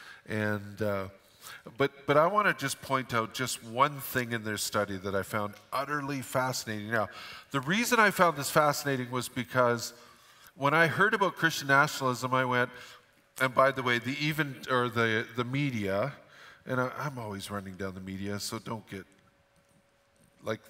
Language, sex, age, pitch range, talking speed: English, male, 50-69, 100-135 Hz, 170 wpm